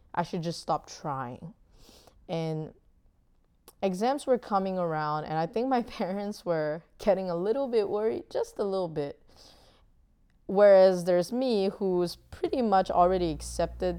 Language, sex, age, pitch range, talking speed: English, female, 20-39, 140-195 Hz, 140 wpm